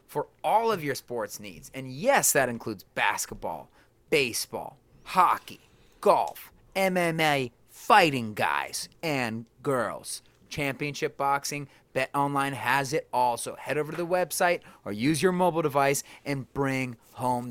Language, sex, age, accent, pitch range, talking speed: English, male, 30-49, American, 120-165 Hz, 135 wpm